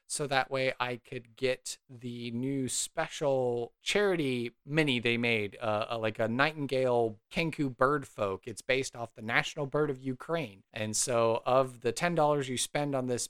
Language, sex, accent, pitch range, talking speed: English, male, American, 125-170 Hz, 165 wpm